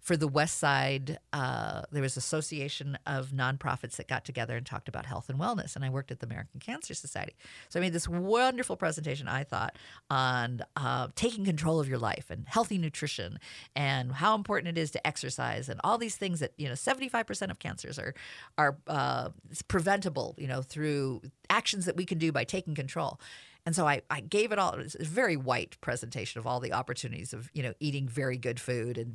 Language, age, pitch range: English, 50-69, 130-165 Hz